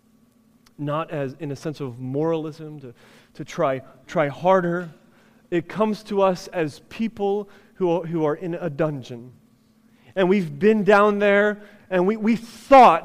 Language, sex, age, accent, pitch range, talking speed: English, male, 30-49, American, 195-250 Hz, 155 wpm